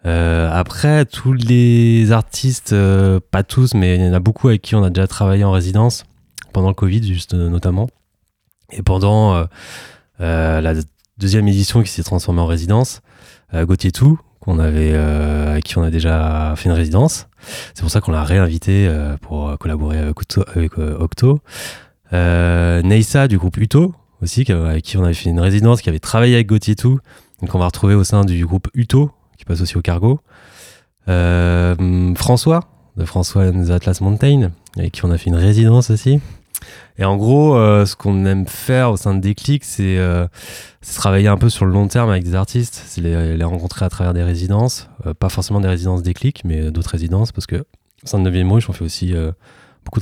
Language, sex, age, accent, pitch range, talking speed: French, male, 20-39, French, 85-110 Hz, 205 wpm